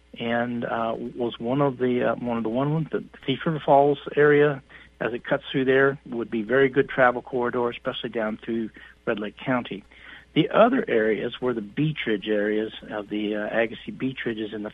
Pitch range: 115-145 Hz